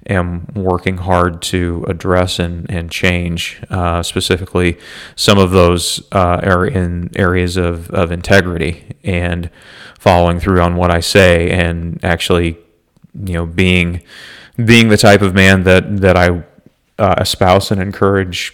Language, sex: English, male